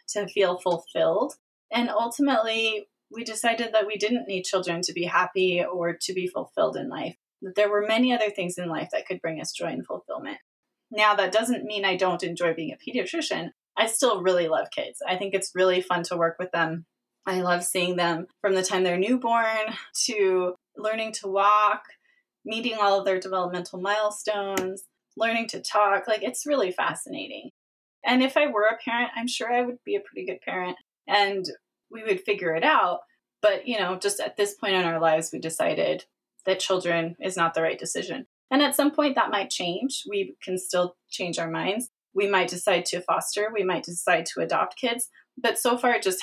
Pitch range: 180-225 Hz